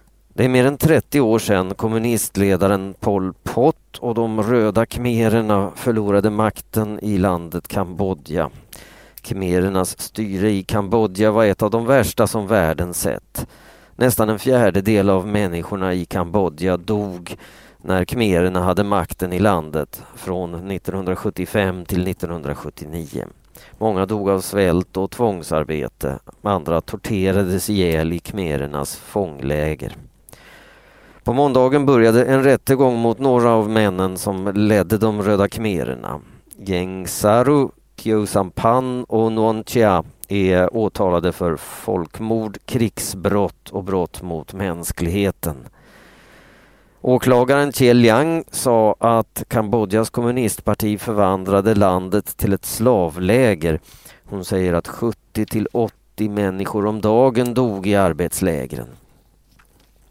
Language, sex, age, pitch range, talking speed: Swedish, male, 40-59, 90-115 Hz, 110 wpm